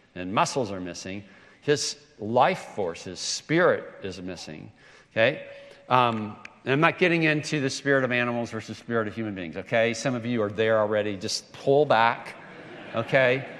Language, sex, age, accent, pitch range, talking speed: English, male, 50-69, American, 115-155 Hz, 170 wpm